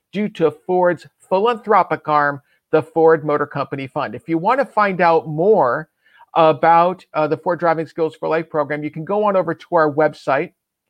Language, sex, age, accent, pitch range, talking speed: English, male, 50-69, American, 155-205 Hz, 180 wpm